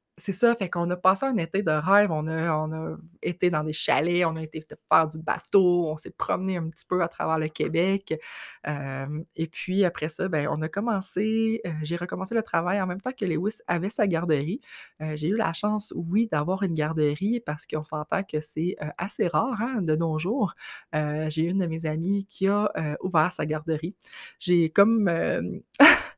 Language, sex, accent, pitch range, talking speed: French, female, Canadian, 160-220 Hz, 210 wpm